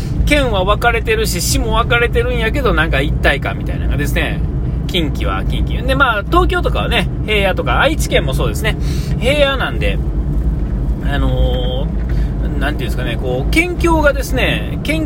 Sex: male